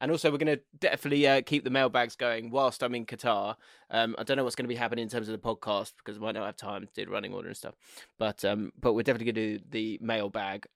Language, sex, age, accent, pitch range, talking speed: English, male, 20-39, British, 120-140 Hz, 290 wpm